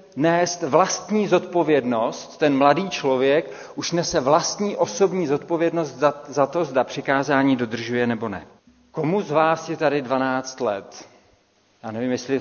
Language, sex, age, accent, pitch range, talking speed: Czech, male, 40-59, native, 125-160 Hz, 135 wpm